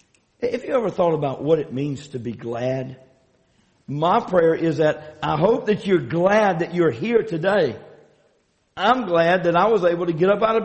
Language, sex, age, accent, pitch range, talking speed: English, male, 50-69, American, 120-165 Hz, 195 wpm